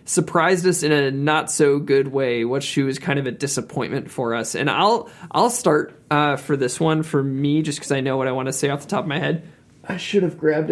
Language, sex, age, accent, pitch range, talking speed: English, male, 20-39, American, 135-160 Hz, 260 wpm